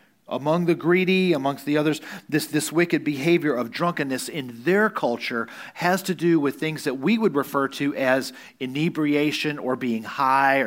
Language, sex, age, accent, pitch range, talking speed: English, male, 40-59, American, 135-175 Hz, 170 wpm